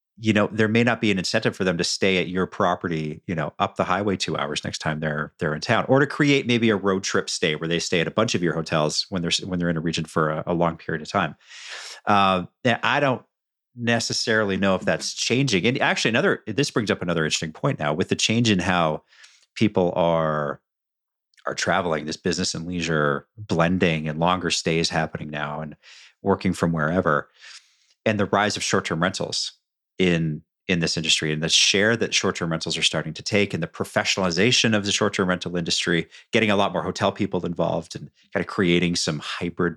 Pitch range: 80-100 Hz